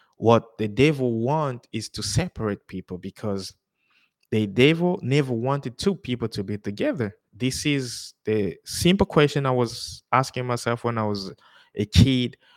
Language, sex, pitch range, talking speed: English, male, 110-150 Hz, 155 wpm